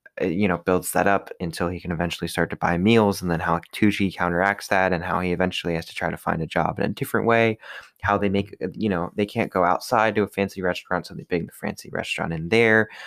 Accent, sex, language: American, male, English